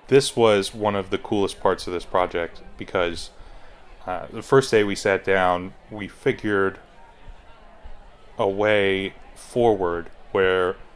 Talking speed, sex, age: 130 wpm, male, 20-39